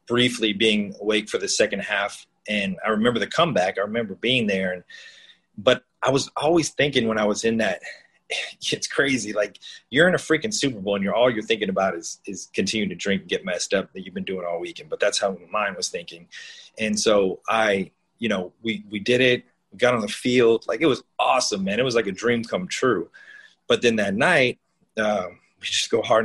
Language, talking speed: English, 225 wpm